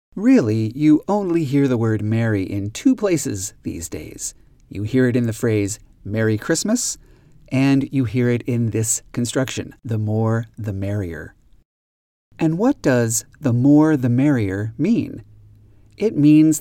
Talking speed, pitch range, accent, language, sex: 150 wpm, 110-145 Hz, American, English, male